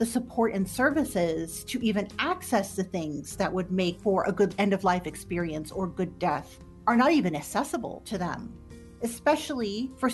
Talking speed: 180 wpm